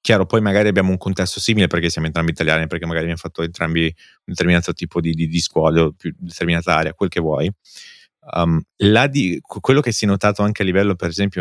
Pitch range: 85-100 Hz